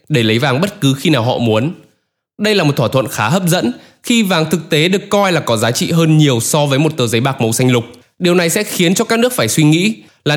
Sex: male